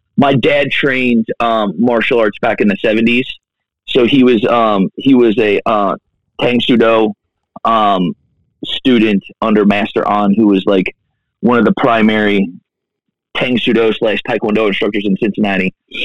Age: 30-49